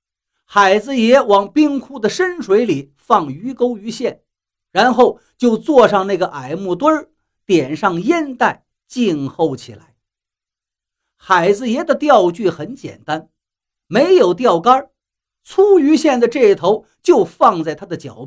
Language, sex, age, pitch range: Chinese, male, 50-69, 165-275 Hz